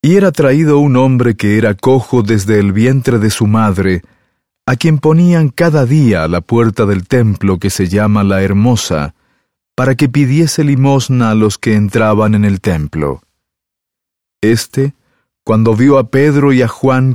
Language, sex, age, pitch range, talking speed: English, male, 40-59, 105-130 Hz, 170 wpm